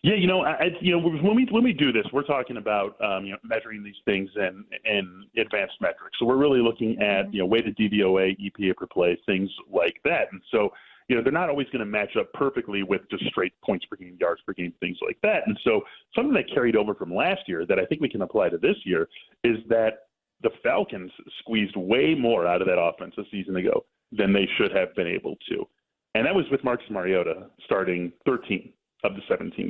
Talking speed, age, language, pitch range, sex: 230 wpm, 30-49, English, 100-150 Hz, male